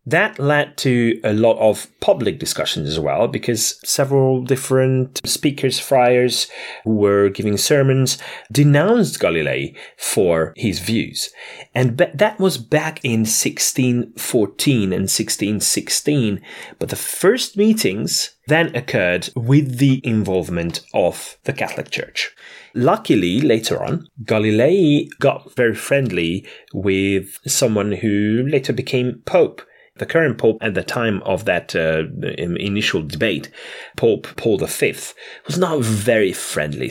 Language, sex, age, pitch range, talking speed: English, male, 30-49, 110-145 Hz, 120 wpm